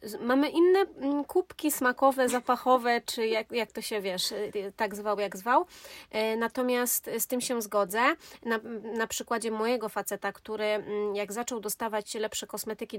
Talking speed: 145 wpm